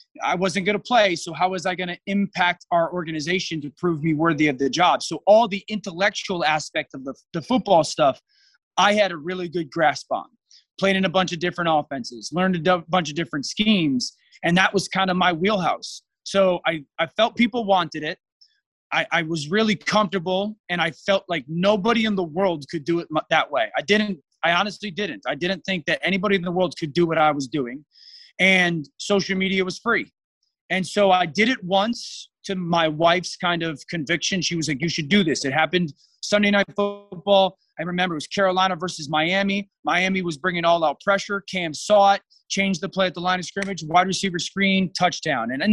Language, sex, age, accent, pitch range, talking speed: English, male, 30-49, American, 165-200 Hz, 210 wpm